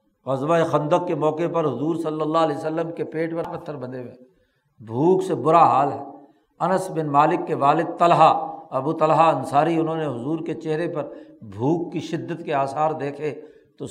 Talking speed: 185 wpm